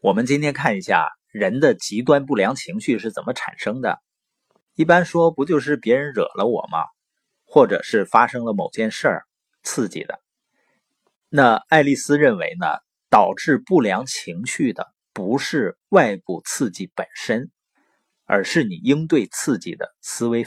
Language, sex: Chinese, male